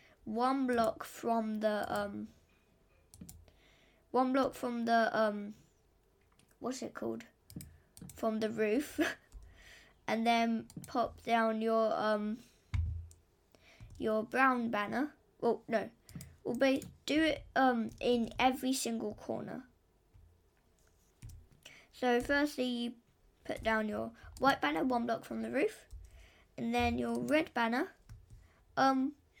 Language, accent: English, British